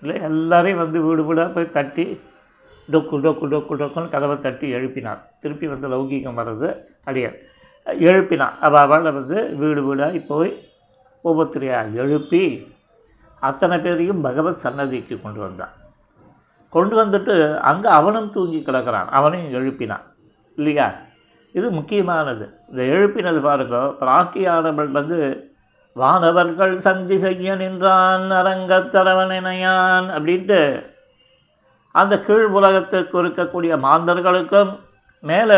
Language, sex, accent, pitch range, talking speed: Tamil, male, native, 145-185 Hz, 105 wpm